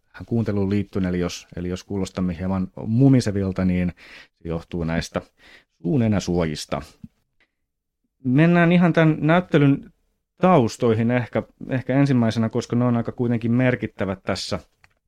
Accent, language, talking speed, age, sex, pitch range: native, Finnish, 105 wpm, 30-49, male, 105-125 Hz